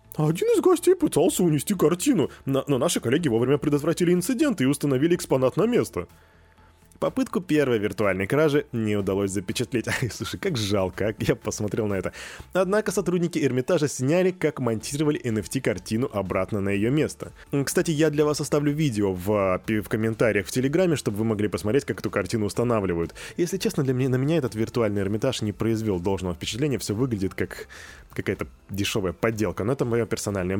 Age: 20-39